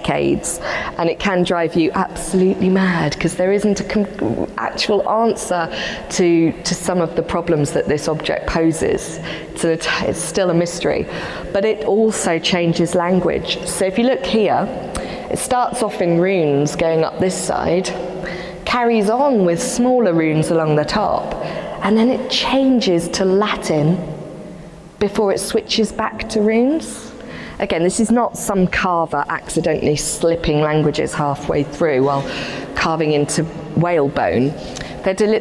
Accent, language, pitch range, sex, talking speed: British, English, 165-220 Hz, female, 140 wpm